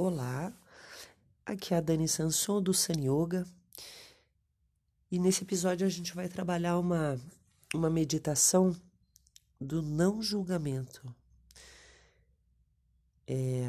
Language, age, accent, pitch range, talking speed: Portuguese, 40-59, Brazilian, 120-175 Hz, 95 wpm